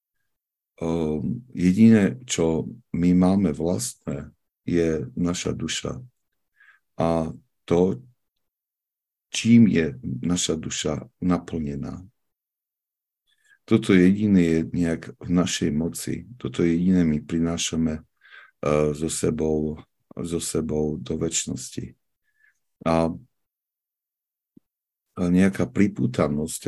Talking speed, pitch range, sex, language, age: 80 wpm, 80-90 Hz, male, Slovak, 50-69